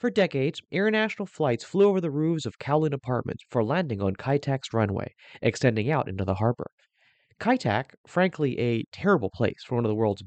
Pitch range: 115-160 Hz